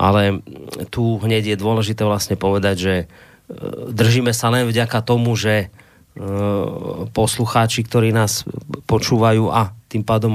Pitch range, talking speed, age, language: 105-115 Hz, 120 wpm, 30-49, Slovak